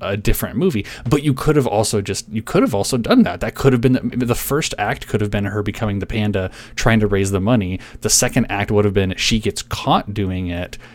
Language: English